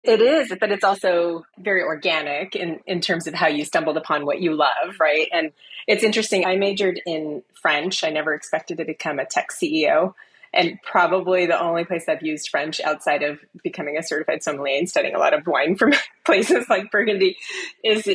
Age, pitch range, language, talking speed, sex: 30-49, 150-195 Hz, English, 195 wpm, female